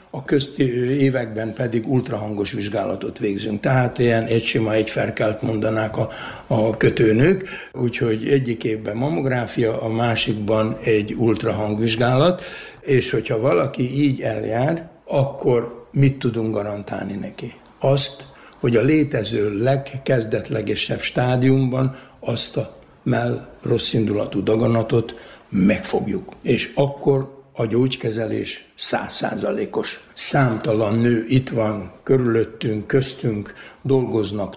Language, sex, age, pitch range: Hungarian, male, 60-79, 110-135 Hz